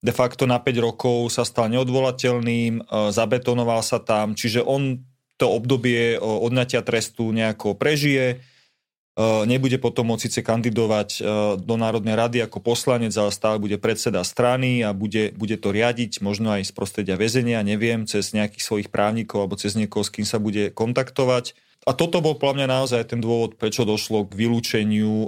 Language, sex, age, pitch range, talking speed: Slovak, male, 30-49, 105-125 Hz, 165 wpm